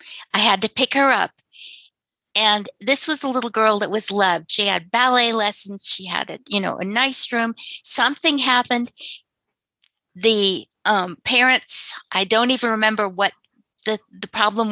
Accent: American